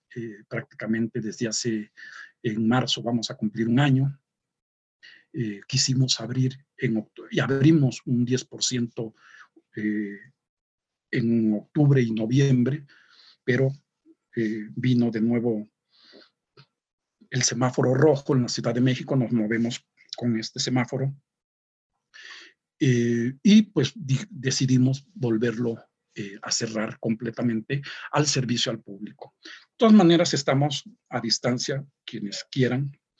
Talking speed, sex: 115 wpm, male